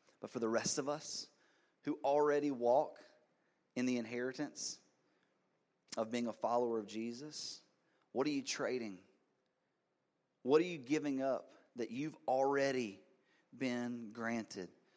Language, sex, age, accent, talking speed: English, male, 30-49, American, 130 wpm